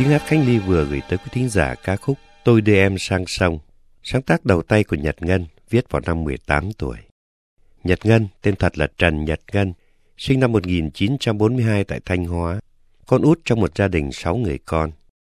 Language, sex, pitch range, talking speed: Vietnamese, male, 80-110 Hz, 200 wpm